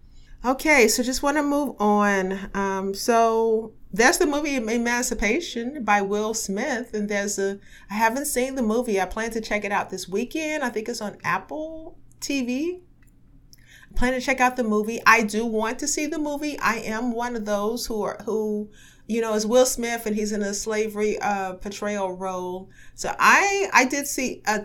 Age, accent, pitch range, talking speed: 30-49, American, 185-225 Hz, 190 wpm